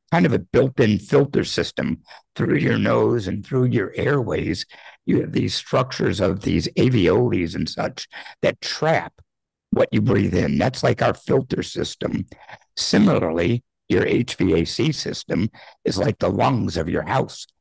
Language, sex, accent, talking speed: English, male, American, 150 wpm